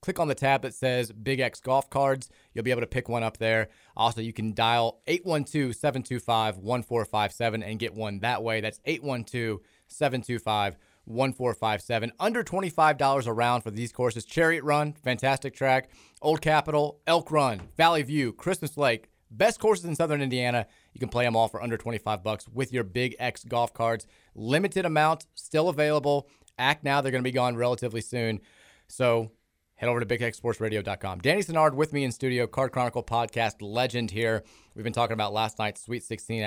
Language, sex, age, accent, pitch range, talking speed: English, male, 30-49, American, 110-140 Hz, 175 wpm